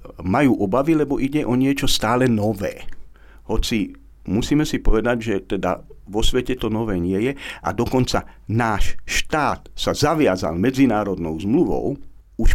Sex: male